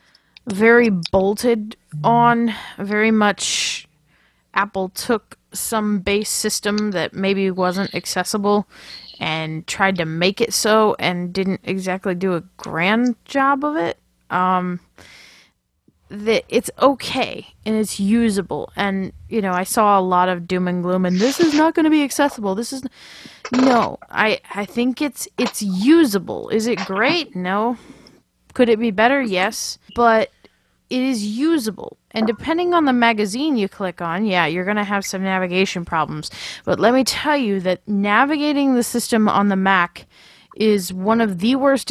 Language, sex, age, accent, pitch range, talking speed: English, female, 20-39, American, 185-235 Hz, 155 wpm